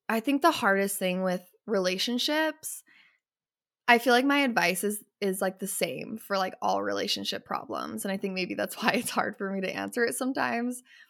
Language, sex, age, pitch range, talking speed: English, female, 10-29, 195-240 Hz, 195 wpm